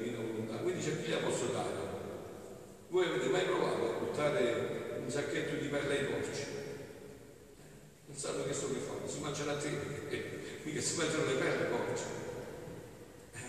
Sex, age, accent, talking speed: male, 50-69, native, 165 wpm